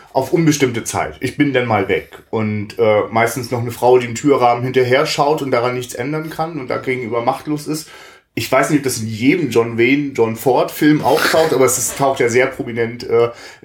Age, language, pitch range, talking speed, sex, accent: 30-49, German, 115-150 Hz, 215 wpm, male, German